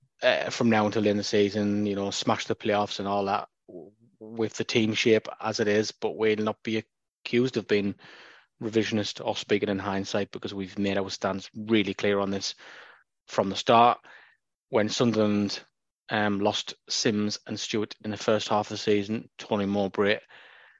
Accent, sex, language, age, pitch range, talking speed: British, male, English, 20-39, 100-110 Hz, 180 wpm